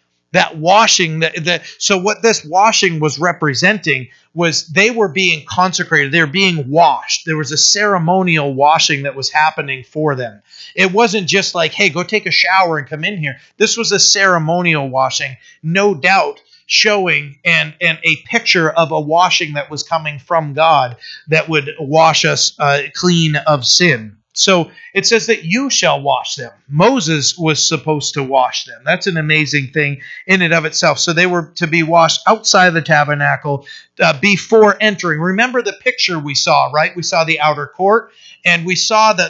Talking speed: 180 wpm